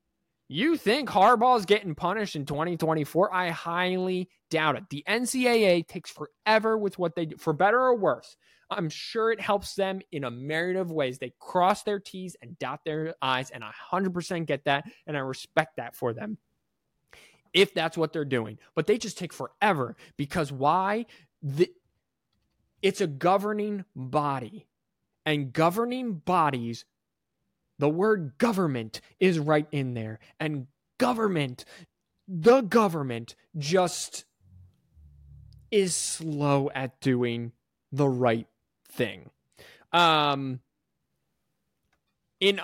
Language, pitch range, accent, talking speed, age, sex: English, 135-190 Hz, American, 130 wpm, 20-39, male